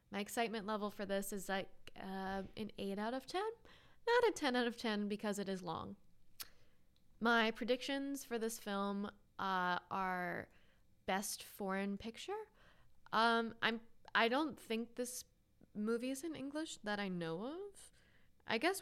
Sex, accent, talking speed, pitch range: female, American, 155 wpm, 185-230 Hz